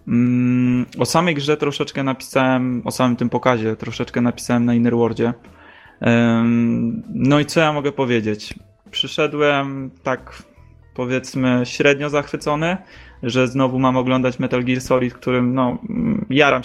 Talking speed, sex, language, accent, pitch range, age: 125 wpm, male, Polish, native, 115-130 Hz, 20-39